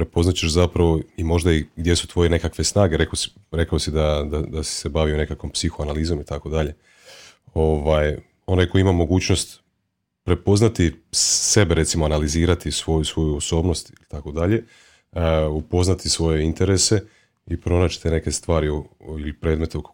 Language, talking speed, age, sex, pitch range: Croatian, 165 wpm, 30-49, male, 75-90 Hz